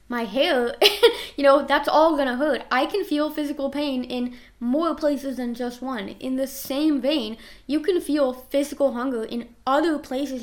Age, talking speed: 10-29, 180 wpm